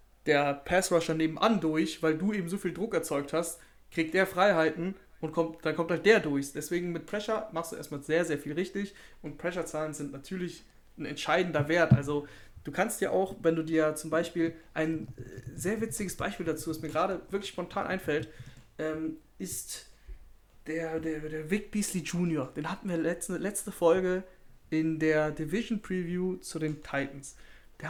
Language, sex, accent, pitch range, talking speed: German, male, German, 155-190 Hz, 175 wpm